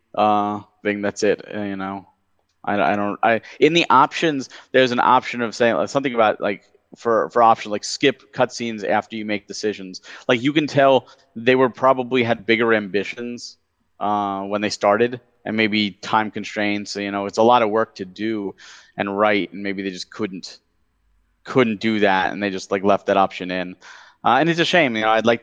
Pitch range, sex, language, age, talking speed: 100-115 Hz, male, English, 30-49, 205 wpm